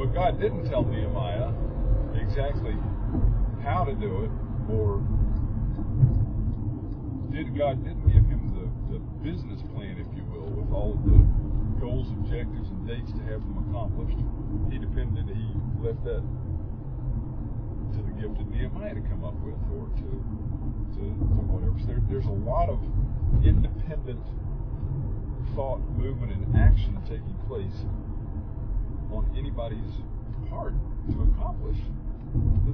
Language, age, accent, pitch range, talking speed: English, 50-69, American, 105-120 Hz, 135 wpm